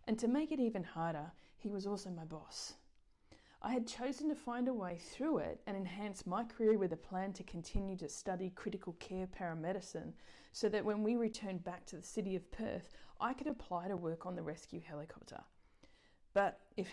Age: 30-49